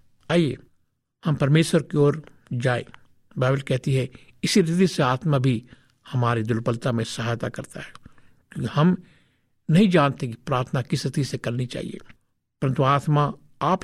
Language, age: Hindi, 60-79